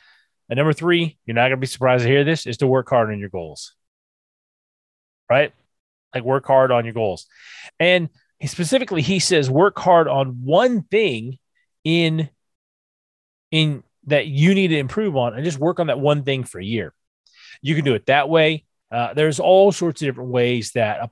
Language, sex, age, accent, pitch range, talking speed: English, male, 30-49, American, 120-155 Hz, 195 wpm